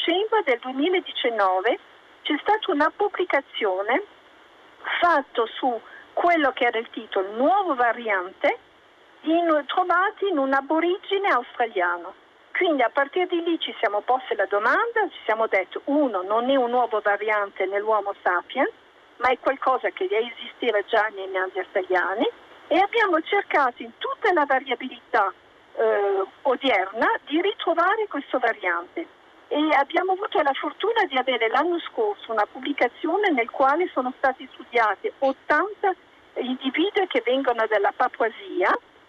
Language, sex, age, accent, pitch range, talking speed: Italian, female, 50-69, native, 235-360 Hz, 135 wpm